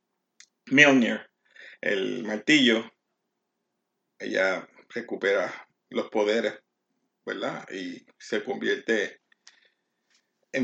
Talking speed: 70 wpm